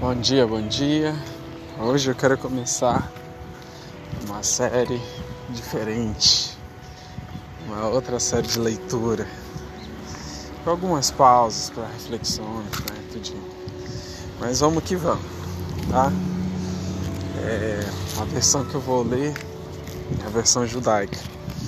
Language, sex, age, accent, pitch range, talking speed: Portuguese, male, 20-39, Brazilian, 100-130 Hz, 100 wpm